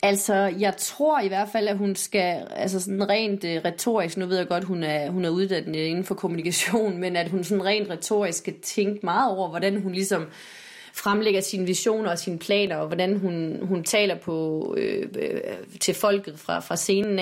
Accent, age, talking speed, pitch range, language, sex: native, 30-49, 200 wpm, 170-195 Hz, Danish, female